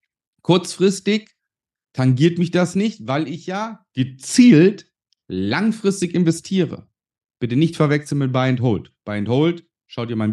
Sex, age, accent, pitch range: male, 40-59, German, 125-175 Hz